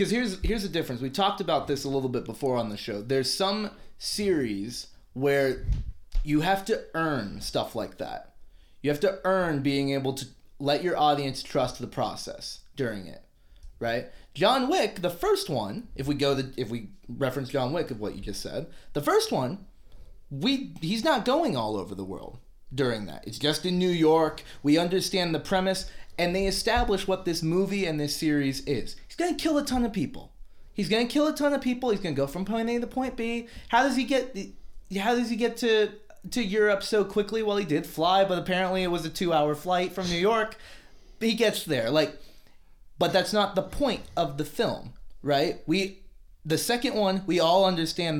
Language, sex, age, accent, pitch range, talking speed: English, male, 20-39, American, 140-205 Hz, 205 wpm